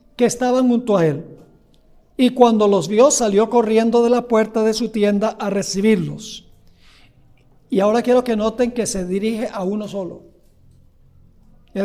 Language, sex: Spanish, male